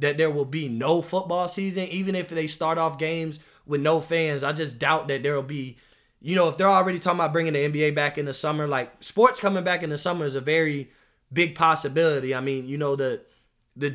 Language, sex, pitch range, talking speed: English, male, 145-175 Hz, 230 wpm